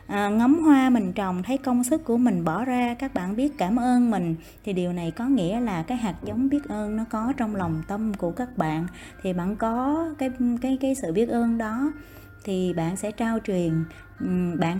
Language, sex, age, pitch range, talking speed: Vietnamese, female, 20-39, 175-235 Hz, 210 wpm